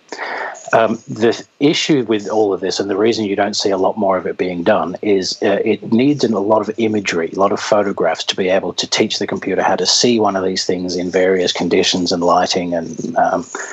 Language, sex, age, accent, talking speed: English, male, 40-59, Australian, 230 wpm